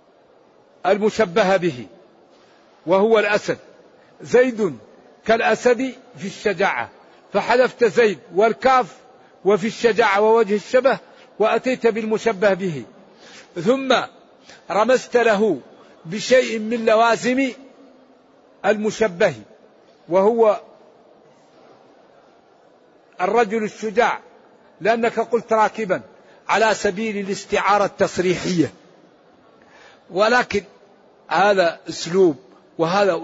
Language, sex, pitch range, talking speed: Arabic, male, 190-230 Hz, 70 wpm